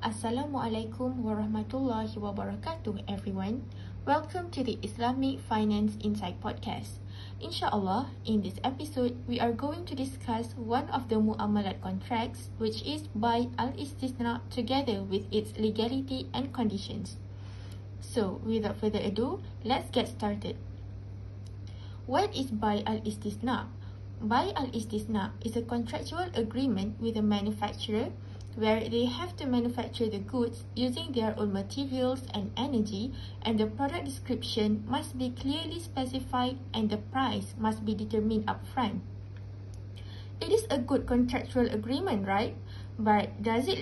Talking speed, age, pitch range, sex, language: 130 wpm, 20-39, 100-130 Hz, female, English